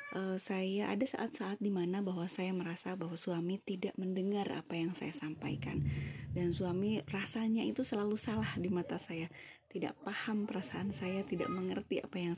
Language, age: Indonesian, 20-39